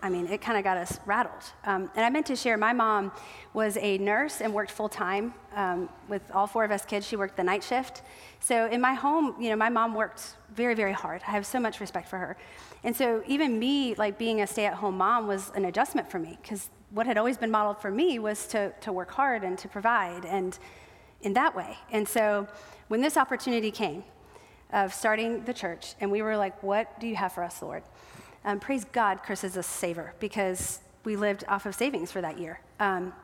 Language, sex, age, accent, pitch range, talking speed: English, female, 30-49, American, 200-240 Hz, 225 wpm